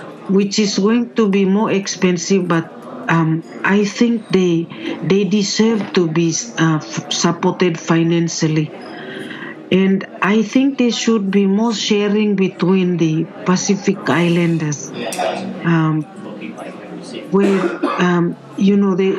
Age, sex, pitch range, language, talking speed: 50-69, female, 170-200 Hz, English, 120 wpm